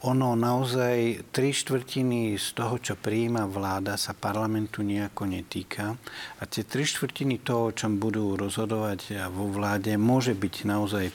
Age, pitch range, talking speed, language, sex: 60-79, 100-120 Hz, 145 wpm, Slovak, male